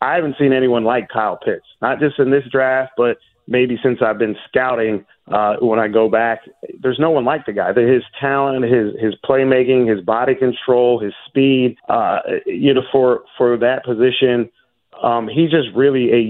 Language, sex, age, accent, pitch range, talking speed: English, male, 40-59, American, 110-130 Hz, 190 wpm